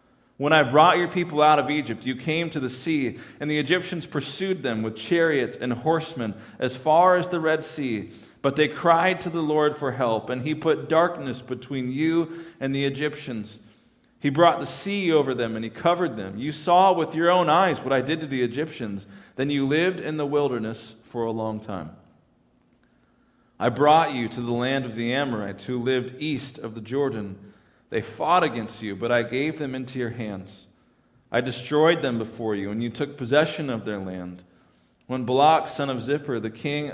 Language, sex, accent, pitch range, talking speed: English, male, American, 120-155 Hz, 200 wpm